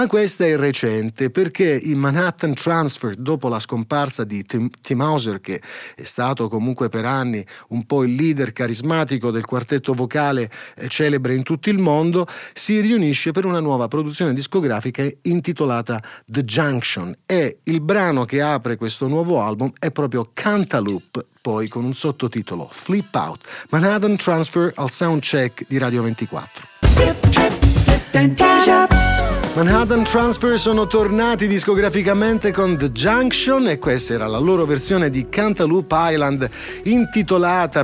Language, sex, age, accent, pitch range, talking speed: Italian, male, 40-59, native, 125-180 Hz, 140 wpm